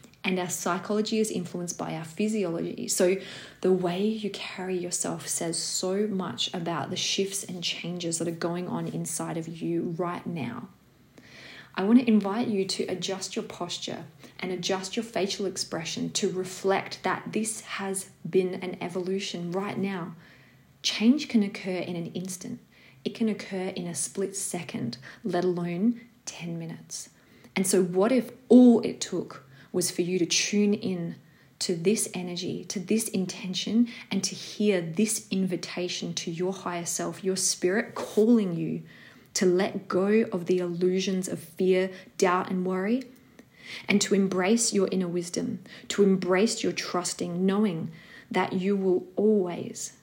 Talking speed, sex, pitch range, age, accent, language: 155 wpm, female, 175-205 Hz, 30-49, Australian, English